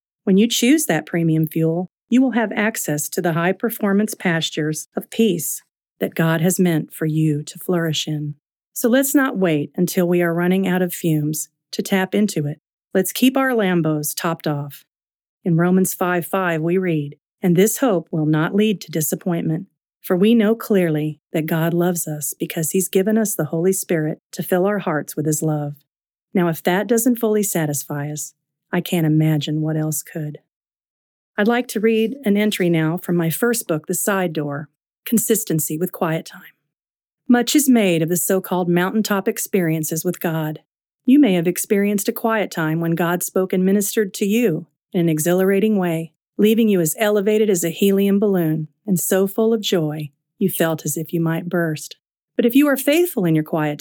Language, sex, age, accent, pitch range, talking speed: English, female, 40-59, American, 160-205 Hz, 190 wpm